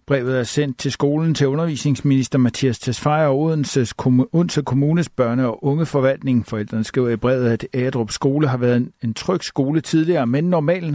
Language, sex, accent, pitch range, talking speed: Danish, male, native, 120-145 Hz, 170 wpm